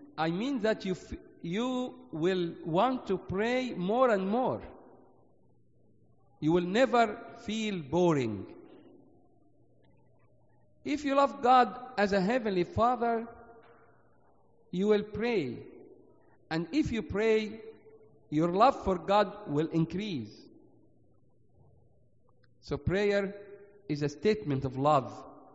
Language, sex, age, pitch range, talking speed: English, male, 50-69, 155-235 Hz, 110 wpm